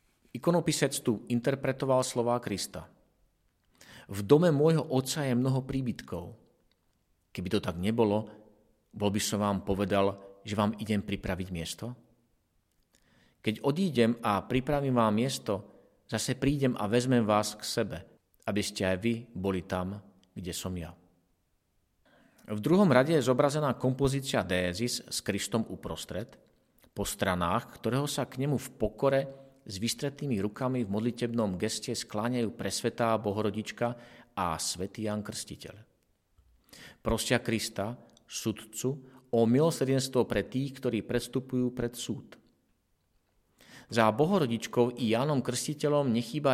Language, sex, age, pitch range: Slovak, male, 40-59, 100-130 Hz